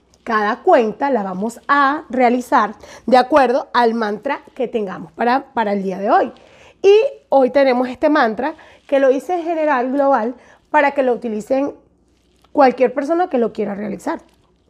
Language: Spanish